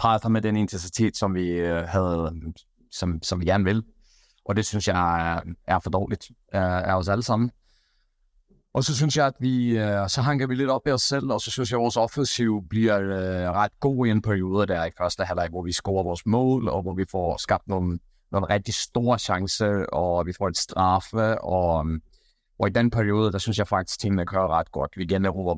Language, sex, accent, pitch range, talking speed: Danish, male, native, 90-110 Hz, 210 wpm